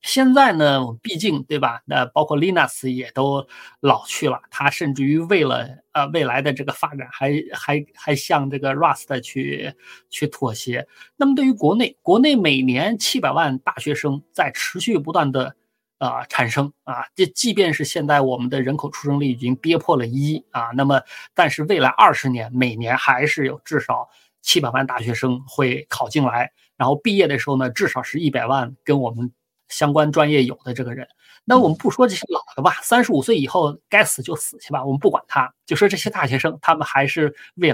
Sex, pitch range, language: male, 130-170 Hz, Chinese